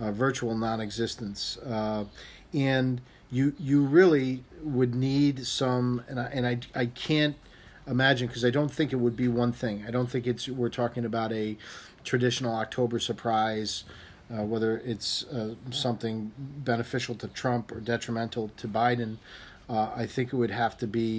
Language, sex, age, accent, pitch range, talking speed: English, male, 40-59, American, 110-130 Hz, 165 wpm